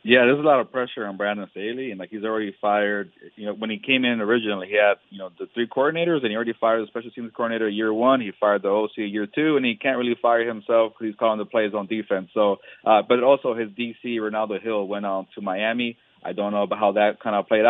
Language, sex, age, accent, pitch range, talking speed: English, male, 30-49, American, 105-125 Hz, 265 wpm